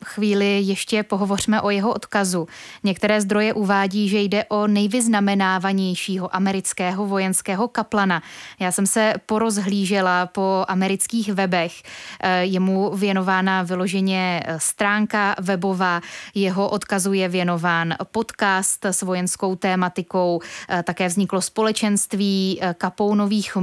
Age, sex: 20-39, female